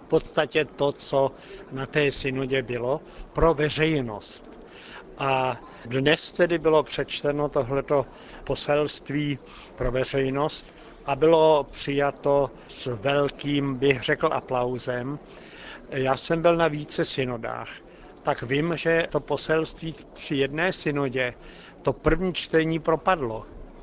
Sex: male